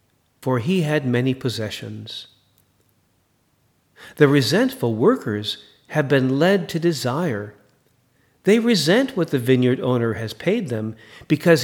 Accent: American